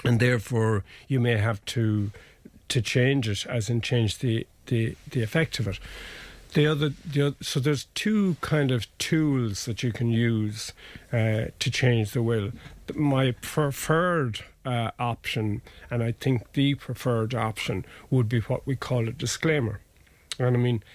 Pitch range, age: 110-125 Hz, 50-69